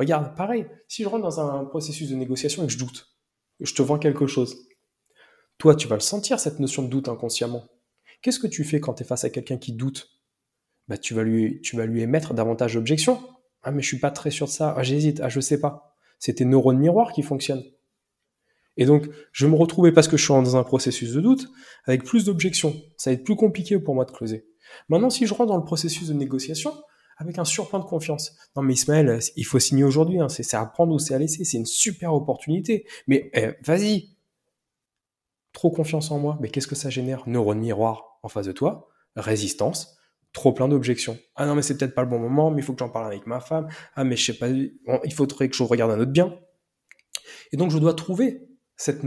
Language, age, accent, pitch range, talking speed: French, 20-39, French, 125-160 Hz, 240 wpm